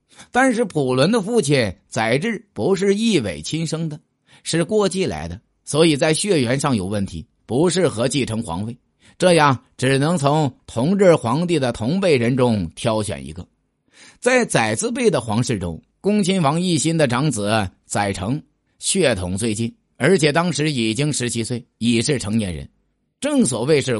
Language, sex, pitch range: Chinese, male, 115-175 Hz